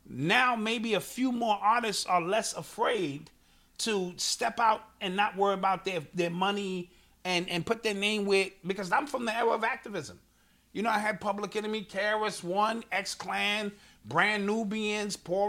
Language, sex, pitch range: English, male, 175-215 Hz